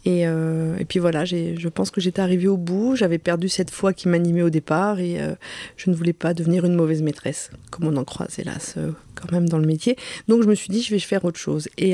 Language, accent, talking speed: French, French, 260 wpm